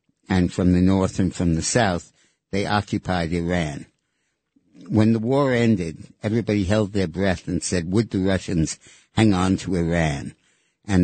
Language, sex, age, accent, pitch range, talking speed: English, male, 60-79, American, 85-105 Hz, 160 wpm